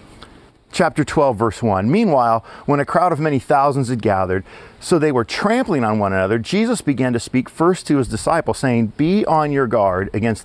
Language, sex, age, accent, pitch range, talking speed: English, male, 40-59, American, 110-170 Hz, 195 wpm